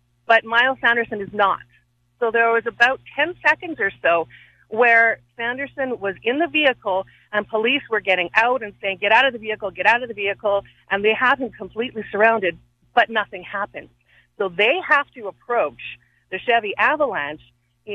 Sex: female